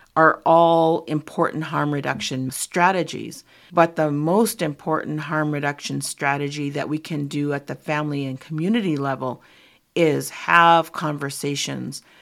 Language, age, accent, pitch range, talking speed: English, 50-69, American, 140-165 Hz, 130 wpm